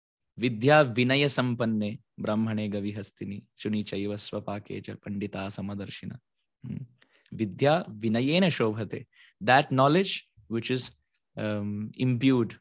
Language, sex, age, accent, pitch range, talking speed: English, male, 20-39, Indian, 105-130 Hz, 65 wpm